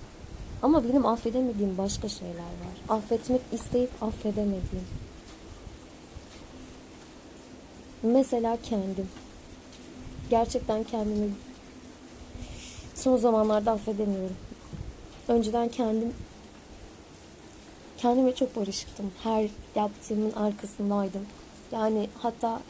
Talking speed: 70 wpm